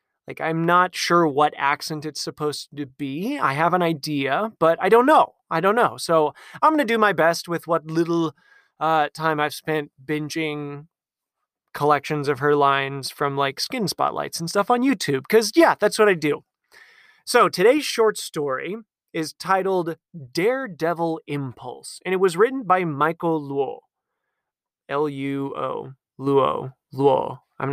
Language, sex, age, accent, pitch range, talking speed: English, male, 30-49, American, 140-185 Hz, 160 wpm